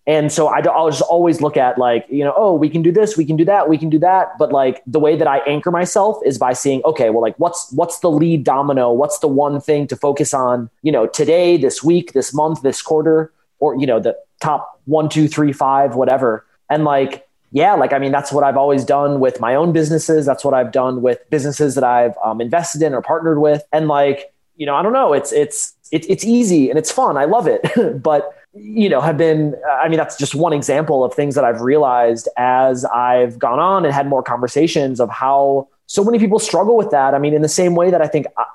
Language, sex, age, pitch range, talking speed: English, male, 30-49, 130-160 Hz, 240 wpm